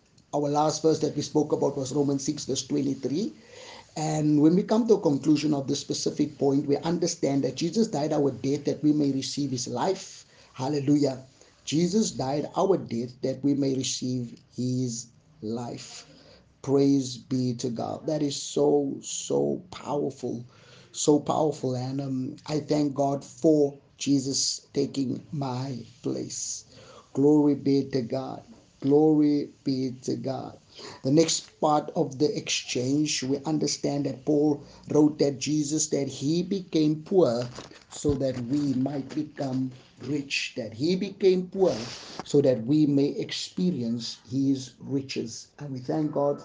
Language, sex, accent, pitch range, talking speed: English, male, South African, 130-150 Hz, 145 wpm